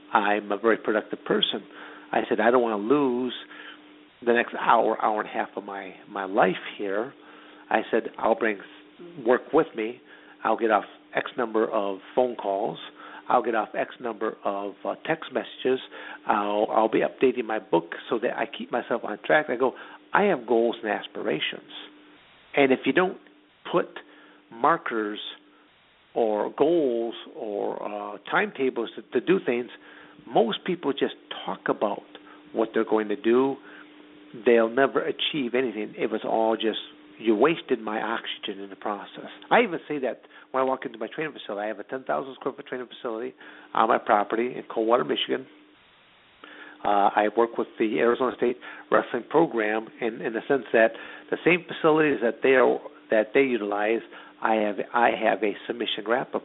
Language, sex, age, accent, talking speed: English, male, 50-69, American, 175 wpm